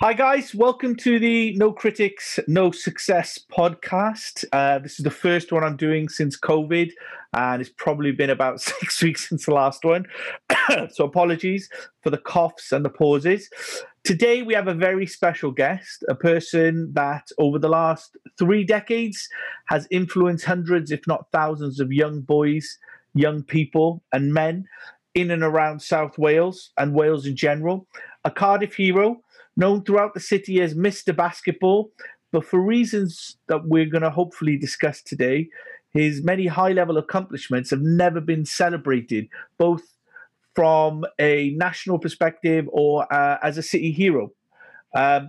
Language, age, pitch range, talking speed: English, 40-59, 150-190 Hz, 155 wpm